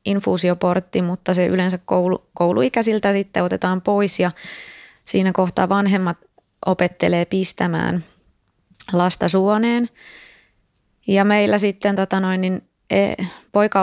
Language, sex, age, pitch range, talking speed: Finnish, female, 20-39, 180-205 Hz, 80 wpm